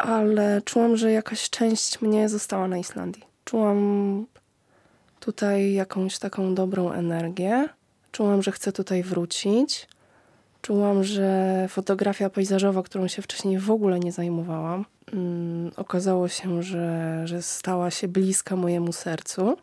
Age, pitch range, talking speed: 20-39, 175-200 Hz, 120 wpm